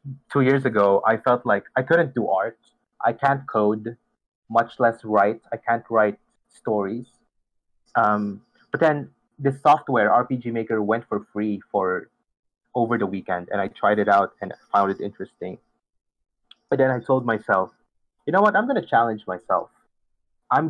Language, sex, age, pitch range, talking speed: English, male, 20-39, 105-140 Hz, 165 wpm